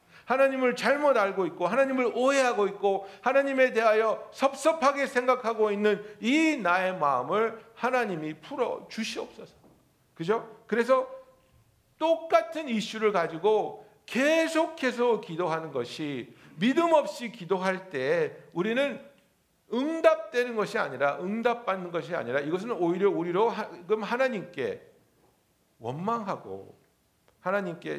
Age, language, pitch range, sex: 60-79, Korean, 175-250 Hz, male